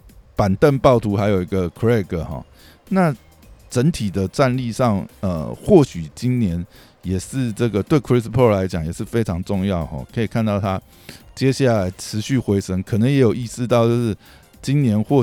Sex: male